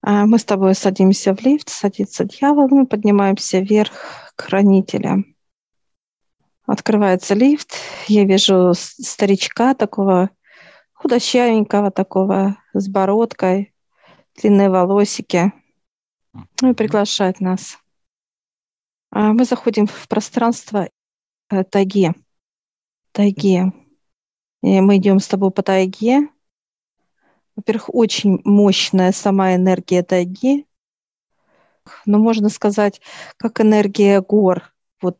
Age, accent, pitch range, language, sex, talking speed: 40-59, native, 185-215 Hz, Russian, female, 85 wpm